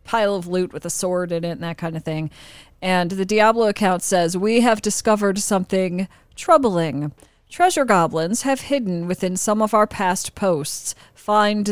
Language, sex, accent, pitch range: English, female, American, 165-210 Hz